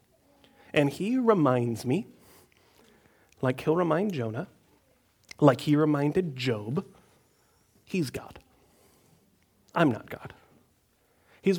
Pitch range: 145-215 Hz